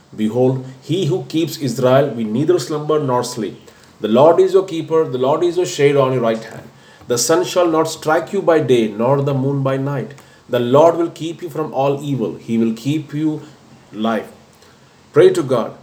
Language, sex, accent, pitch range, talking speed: English, male, Indian, 120-150 Hz, 200 wpm